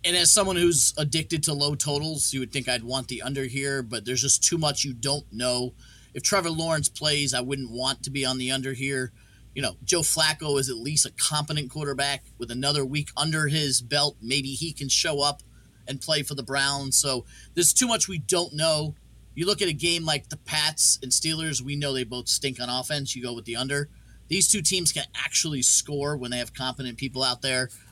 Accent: American